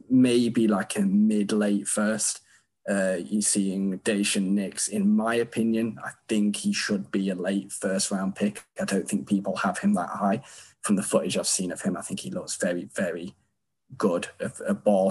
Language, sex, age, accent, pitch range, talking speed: English, male, 20-39, British, 95-110 Hz, 185 wpm